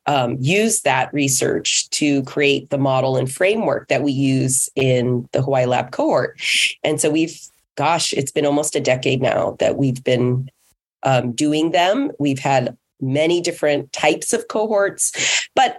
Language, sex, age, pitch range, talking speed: English, female, 30-49, 135-165 Hz, 160 wpm